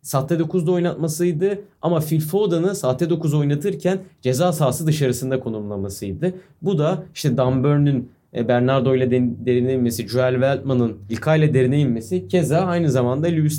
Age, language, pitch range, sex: 30-49, Turkish, 130-170 Hz, male